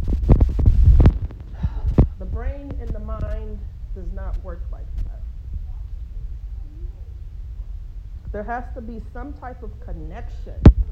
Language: English